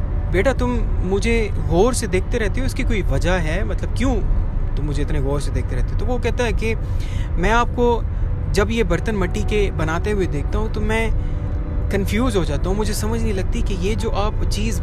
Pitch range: 85-95 Hz